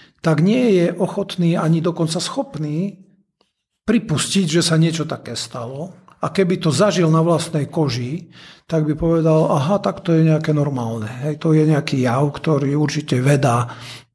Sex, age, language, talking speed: male, 50-69, Slovak, 155 wpm